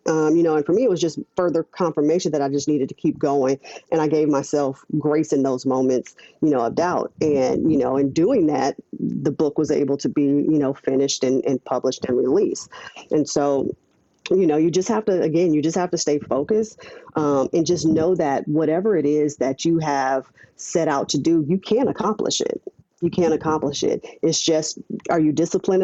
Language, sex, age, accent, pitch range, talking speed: English, female, 40-59, American, 145-170 Hz, 215 wpm